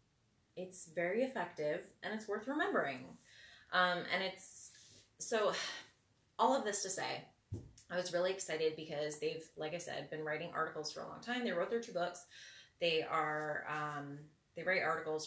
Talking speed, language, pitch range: 170 wpm, English, 155-210 Hz